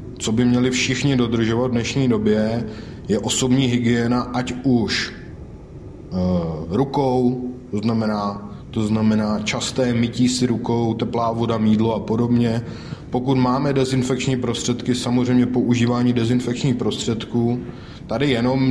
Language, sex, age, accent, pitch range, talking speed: Czech, male, 20-39, native, 110-125 Hz, 120 wpm